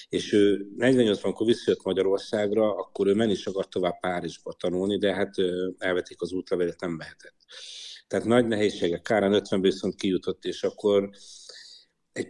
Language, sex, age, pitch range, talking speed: Hungarian, male, 60-79, 95-105 Hz, 145 wpm